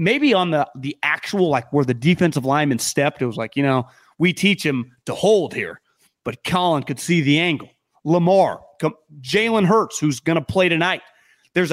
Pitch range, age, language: 145-205 Hz, 30-49, English